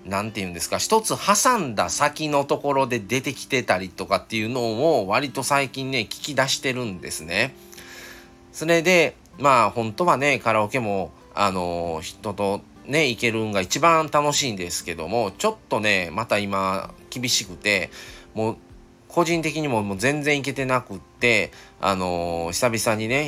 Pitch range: 95-145 Hz